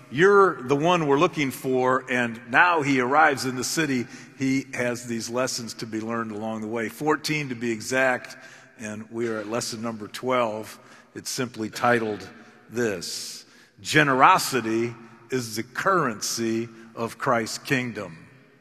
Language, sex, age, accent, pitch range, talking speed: English, male, 50-69, American, 115-140 Hz, 140 wpm